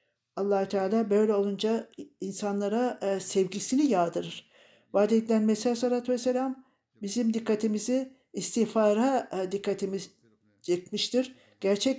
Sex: male